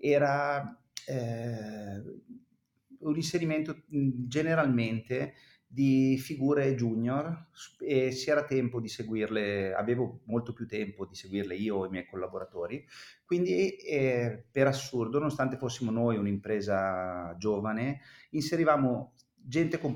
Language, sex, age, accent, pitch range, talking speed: Italian, male, 30-49, native, 100-135 Hz, 110 wpm